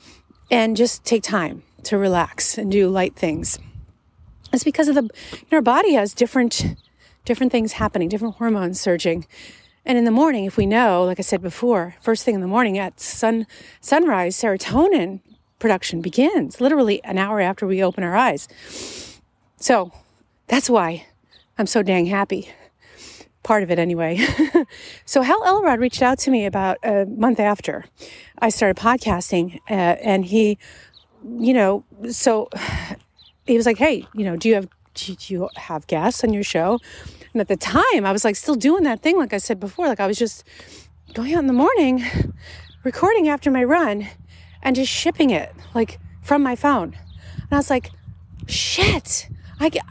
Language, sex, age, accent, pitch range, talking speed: English, female, 40-59, American, 195-260 Hz, 170 wpm